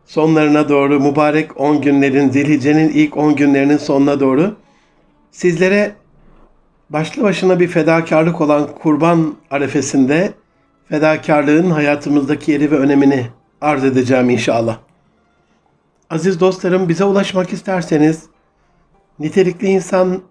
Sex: male